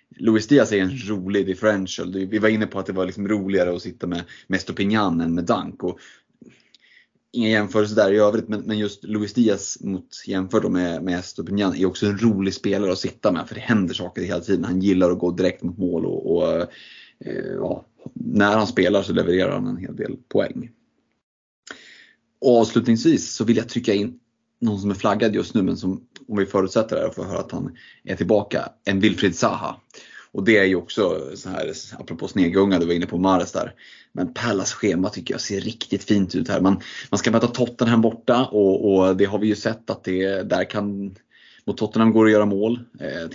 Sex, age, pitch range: male, 30-49, 95-110 Hz